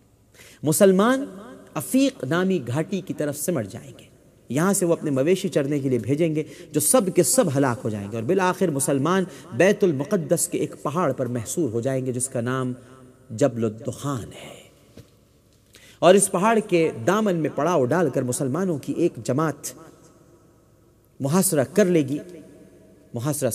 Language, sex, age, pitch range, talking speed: Urdu, male, 40-59, 125-165 Hz, 165 wpm